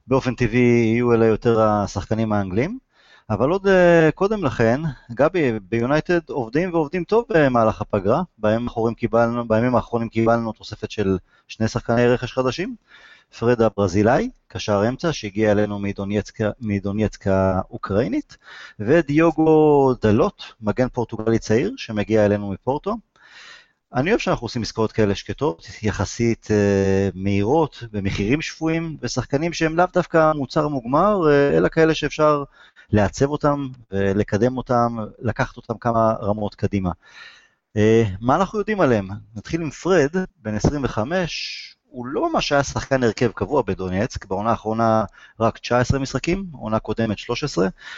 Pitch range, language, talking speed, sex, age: 105-145 Hz, Hebrew, 120 wpm, male, 30-49